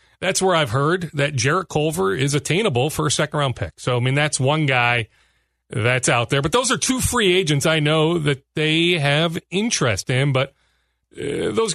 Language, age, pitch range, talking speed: English, 40-59, 125-180 Hz, 195 wpm